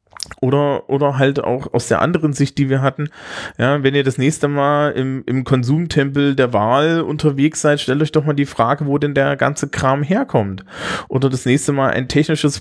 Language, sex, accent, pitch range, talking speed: German, male, German, 130-165 Hz, 200 wpm